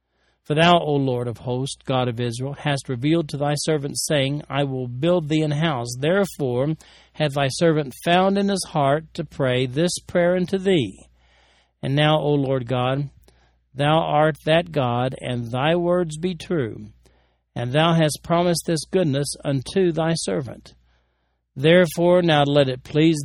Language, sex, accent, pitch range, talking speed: English, male, American, 125-165 Hz, 165 wpm